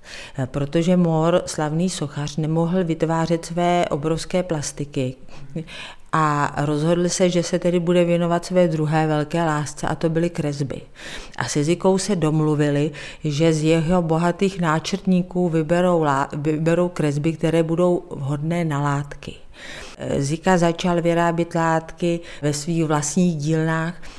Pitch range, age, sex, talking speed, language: 145-175 Hz, 40-59, female, 130 wpm, Czech